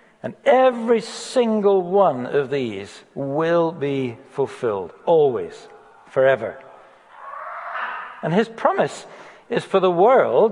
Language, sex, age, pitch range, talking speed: English, male, 60-79, 165-235 Hz, 105 wpm